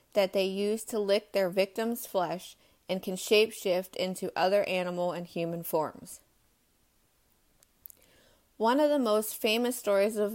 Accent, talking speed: American, 140 wpm